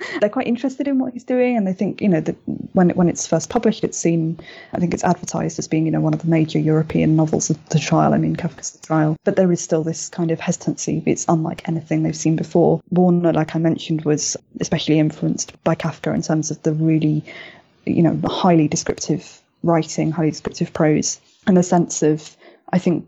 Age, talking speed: 20-39, 220 wpm